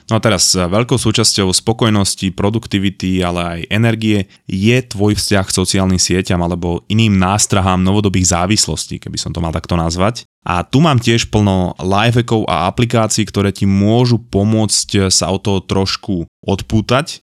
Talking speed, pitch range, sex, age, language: 150 wpm, 100-115 Hz, male, 20-39, Slovak